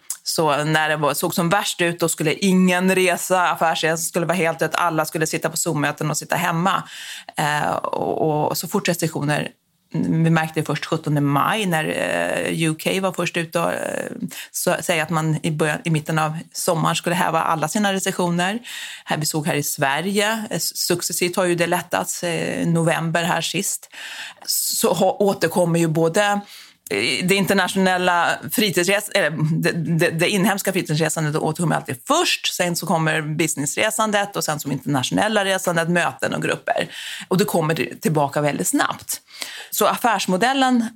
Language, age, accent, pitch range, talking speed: Swedish, 30-49, native, 155-190 Hz, 160 wpm